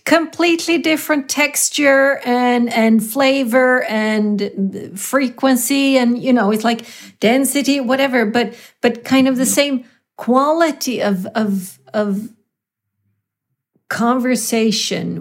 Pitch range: 200-265 Hz